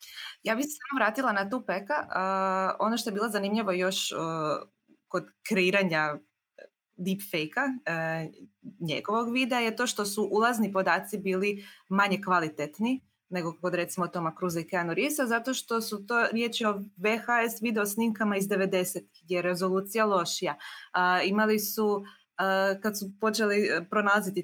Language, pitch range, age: Croatian, 180-225 Hz, 20-39